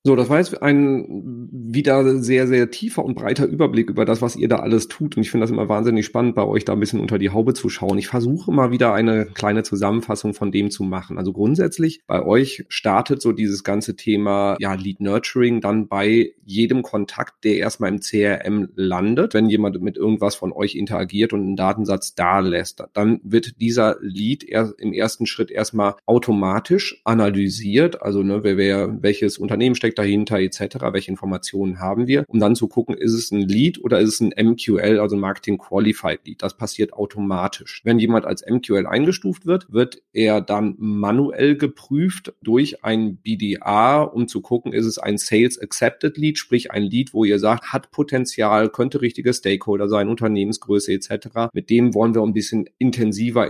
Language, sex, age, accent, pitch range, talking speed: German, male, 30-49, German, 100-120 Hz, 190 wpm